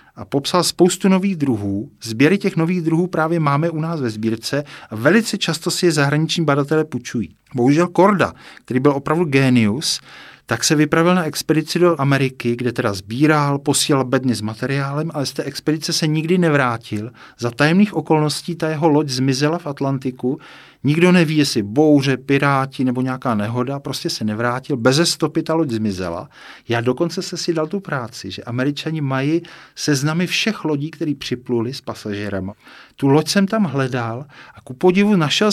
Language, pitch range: Czech, 130-165 Hz